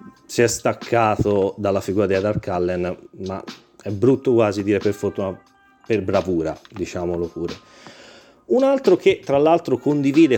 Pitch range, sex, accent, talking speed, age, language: 105-150 Hz, male, native, 145 wpm, 30-49, Italian